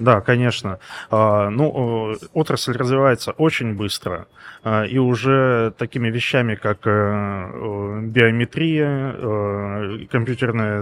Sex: male